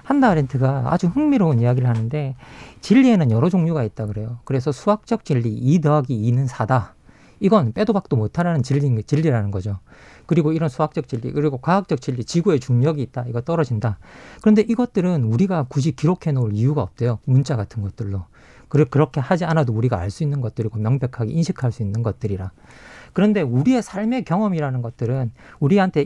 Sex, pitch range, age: male, 130-195 Hz, 40-59